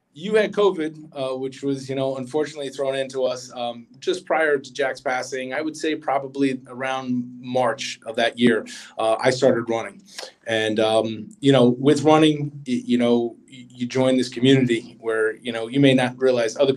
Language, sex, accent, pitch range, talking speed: English, male, American, 110-130 Hz, 185 wpm